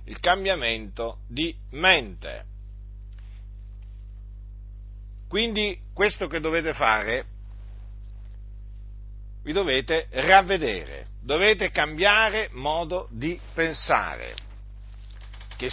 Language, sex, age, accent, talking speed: Italian, male, 50-69, native, 70 wpm